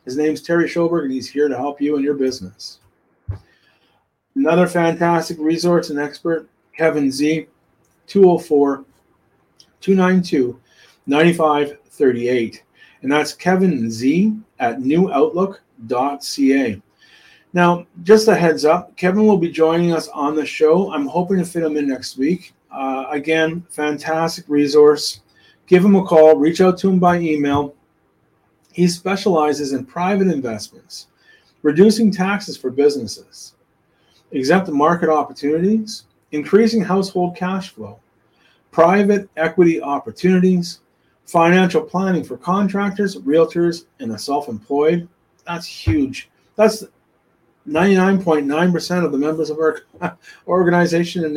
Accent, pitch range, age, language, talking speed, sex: American, 145-185 Hz, 30-49, English, 120 wpm, male